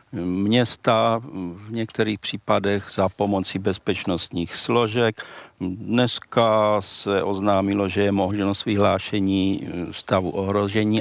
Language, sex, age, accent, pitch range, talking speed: Czech, male, 50-69, native, 100-125 Hz, 95 wpm